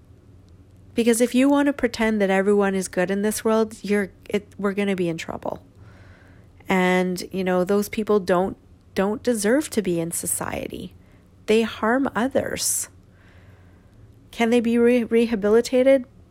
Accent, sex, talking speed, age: American, female, 145 wpm, 40-59